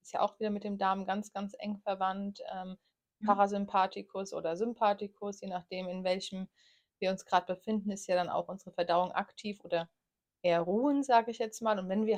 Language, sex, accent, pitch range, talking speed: German, female, German, 180-210 Hz, 195 wpm